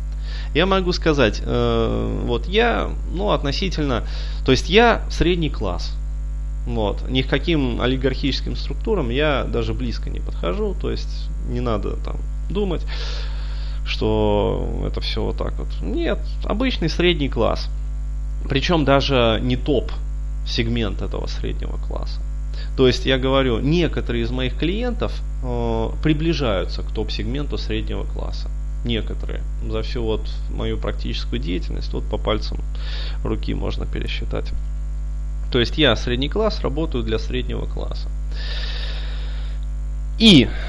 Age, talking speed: 20-39, 125 wpm